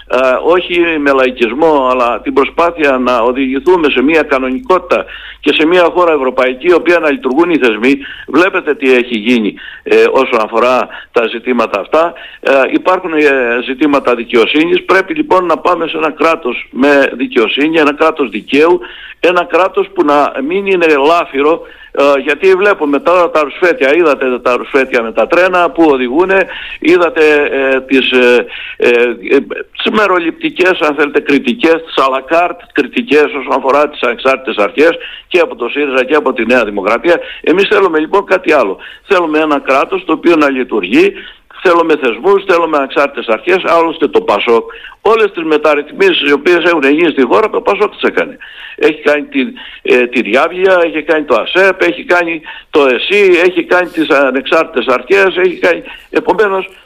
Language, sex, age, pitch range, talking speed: Greek, male, 60-79, 135-190 Hz, 155 wpm